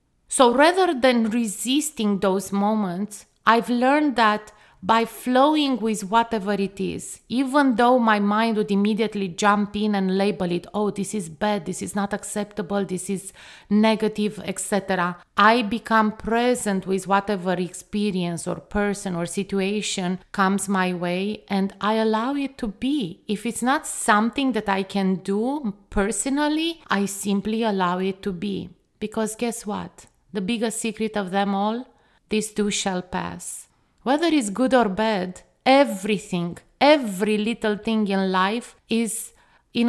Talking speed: 145 wpm